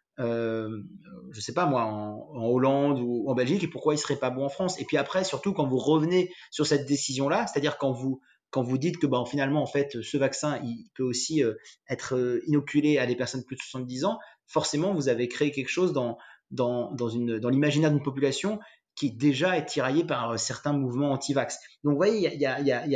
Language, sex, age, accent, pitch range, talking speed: French, male, 30-49, French, 125-150 Hz, 230 wpm